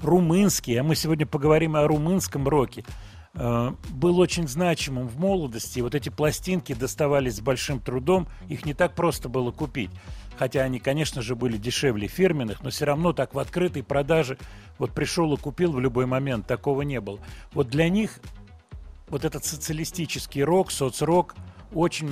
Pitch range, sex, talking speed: 125-160 Hz, male, 160 wpm